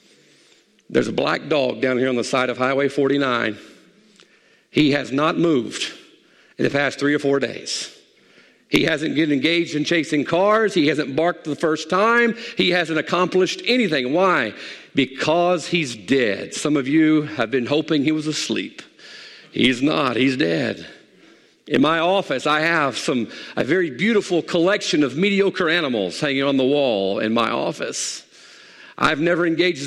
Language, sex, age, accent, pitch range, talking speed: English, male, 50-69, American, 140-185 Hz, 165 wpm